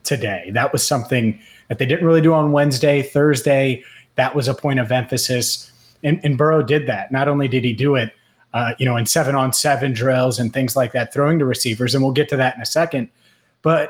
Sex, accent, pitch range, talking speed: male, American, 125-150 Hz, 230 wpm